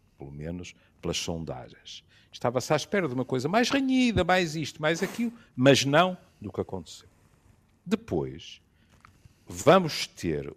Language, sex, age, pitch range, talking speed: Portuguese, male, 50-69, 85-125 Hz, 135 wpm